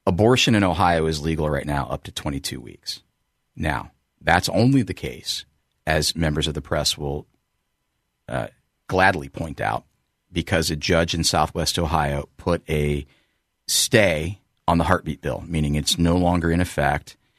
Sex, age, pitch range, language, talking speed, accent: male, 40-59, 75-95 Hz, English, 155 wpm, American